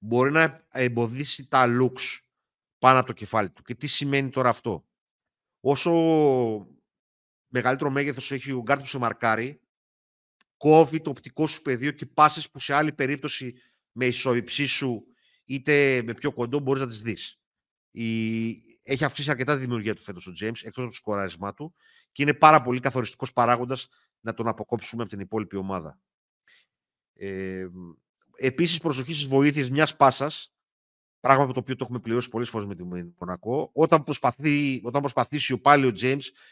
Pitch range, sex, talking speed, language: 115-145 Hz, male, 165 wpm, Greek